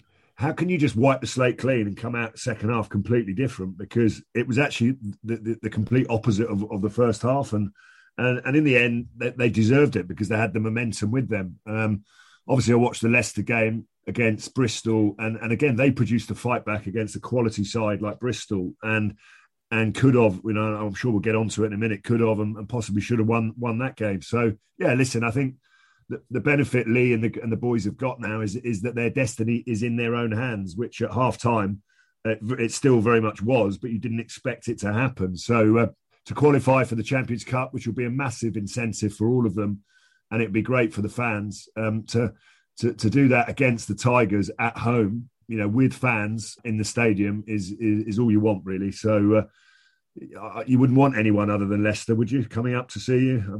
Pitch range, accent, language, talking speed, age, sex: 105-125 Hz, British, English, 230 wpm, 40-59, male